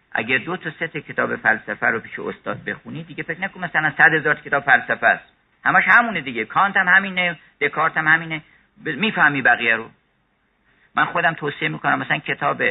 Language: Persian